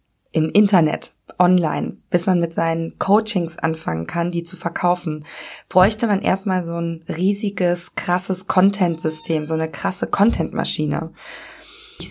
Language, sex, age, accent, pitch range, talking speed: German, female, 20-39, German, 165-200 Hz, 130 wpm